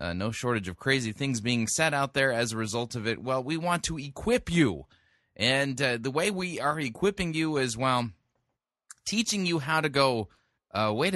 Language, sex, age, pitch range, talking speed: English, male, 30-49, 110-140 Hz, 205 wpm